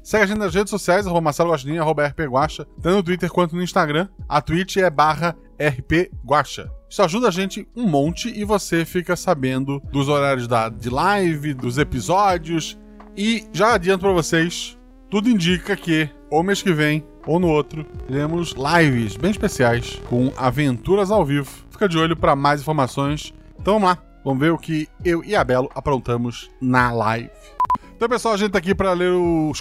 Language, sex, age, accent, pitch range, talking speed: Portuguese, male, 20-39, Brazilian, 135-195 Hz, 175 wpm